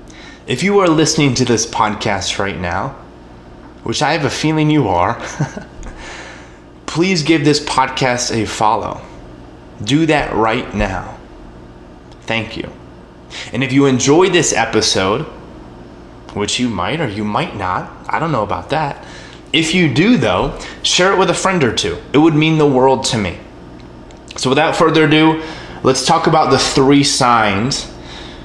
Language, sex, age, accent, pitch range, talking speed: English, male, 20-39, American, 90-140 Hz, 155 wpm